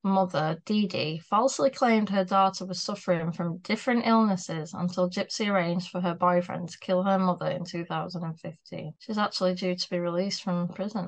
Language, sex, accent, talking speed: English, female, British, 175 wpm